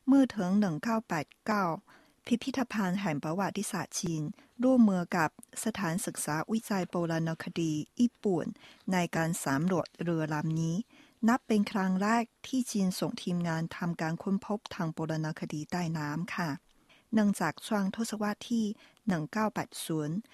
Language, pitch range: Thai, 170-225 Hz